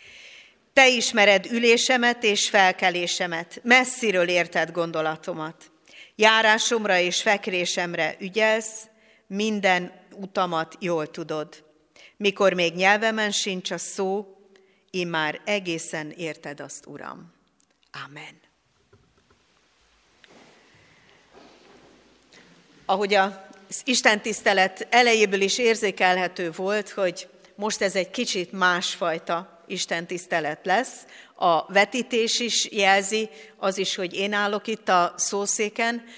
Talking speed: 95 wpm